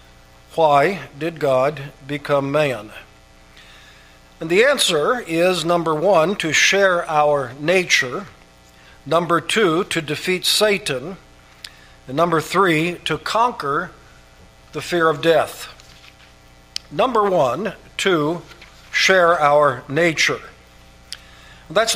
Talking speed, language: 100 wpm, English